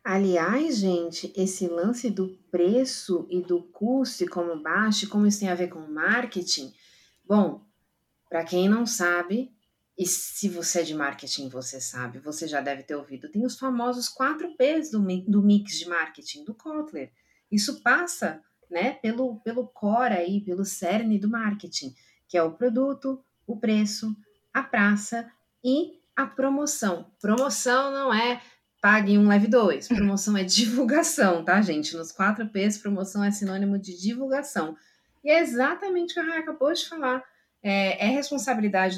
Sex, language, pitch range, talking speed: female, Portuguese, 180-245 Hz, 155 wpm